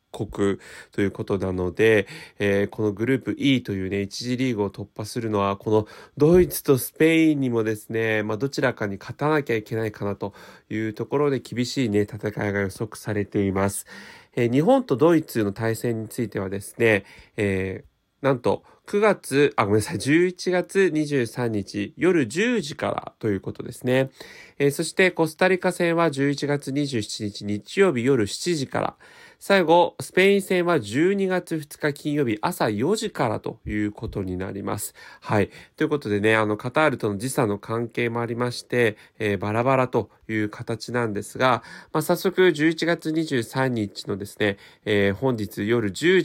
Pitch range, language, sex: 105-150 Hz, Japanese, male